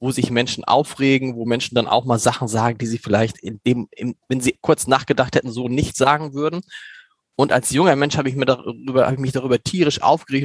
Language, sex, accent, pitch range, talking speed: German, male, German, 125-160 Hz, 195 wpm